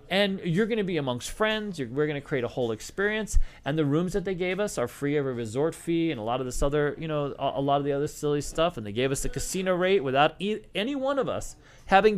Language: English